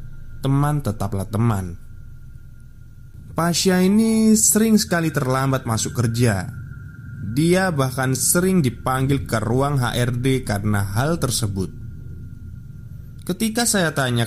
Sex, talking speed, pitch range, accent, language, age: male, 95 wpm, 105-130 Hz, native, Indonesian, 20-39